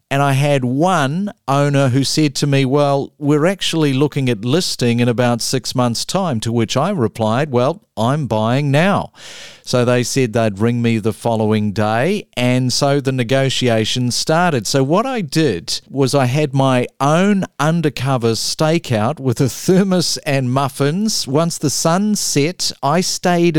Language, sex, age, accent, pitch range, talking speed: English, male, 40-59, Australian, 120-155 Hz, 165 wpm